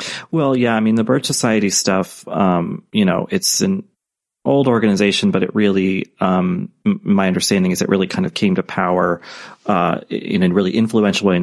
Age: 30-49